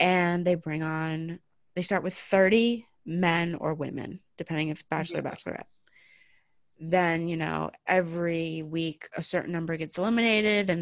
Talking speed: 150 wpm